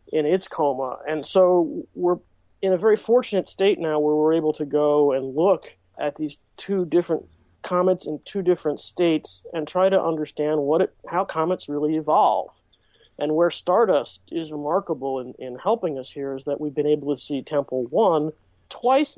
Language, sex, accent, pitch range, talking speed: English, male, American, 150-185 Hz, 180 wpm